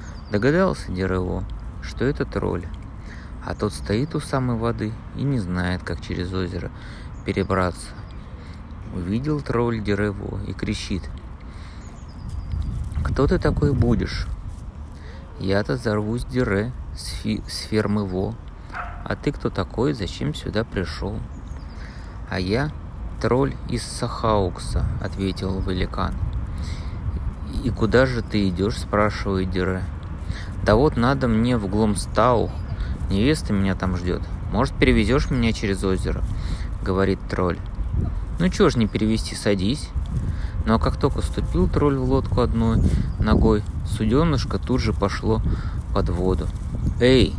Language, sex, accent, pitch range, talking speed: Russian, male, native, 90-110 Hz, 125 wpm